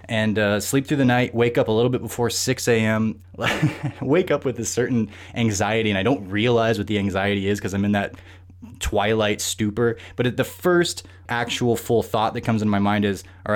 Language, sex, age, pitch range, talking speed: English, male, 20-39, 95-120 Hz, 210 wpm